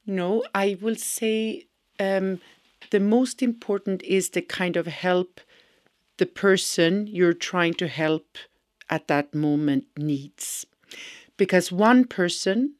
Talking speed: 120 wpm